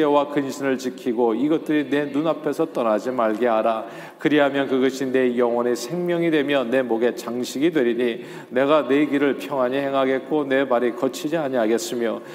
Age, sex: 40-59, male